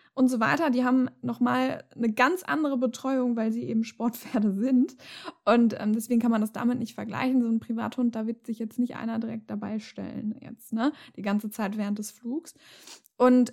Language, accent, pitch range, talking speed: German, German, 225-255 Hz, 205 wpm